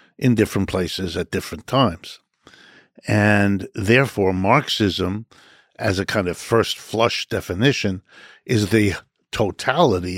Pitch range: 95-120 Hz